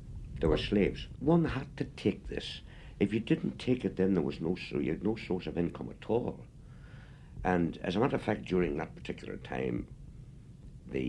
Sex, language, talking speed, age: male, English, 200 wpm, 60-79